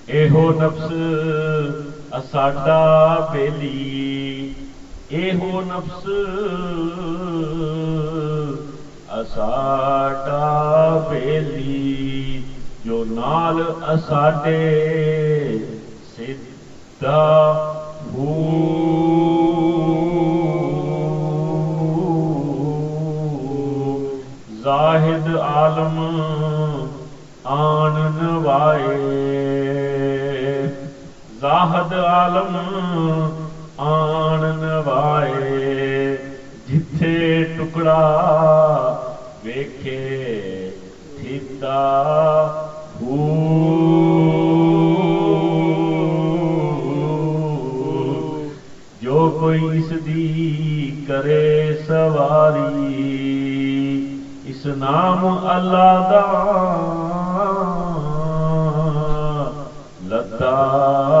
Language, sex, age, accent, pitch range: English, male, 40-59, Indian, 140-160 Hz